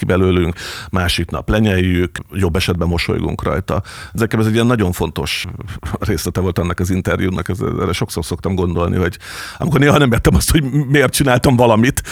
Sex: male